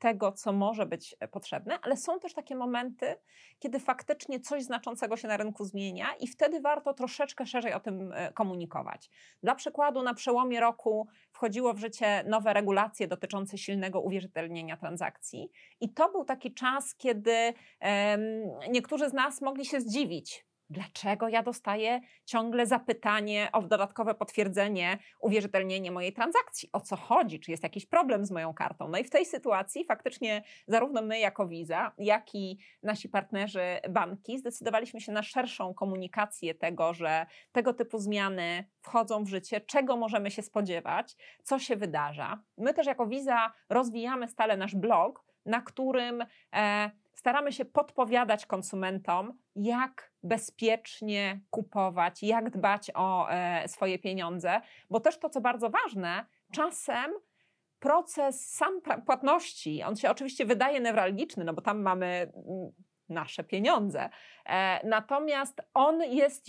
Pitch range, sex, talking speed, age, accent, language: 195-255 Hz, female, 140 wpm, 30-49, native, Polish